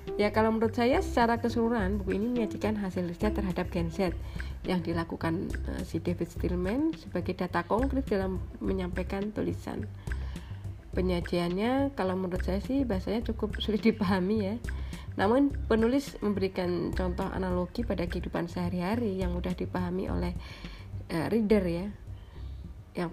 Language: English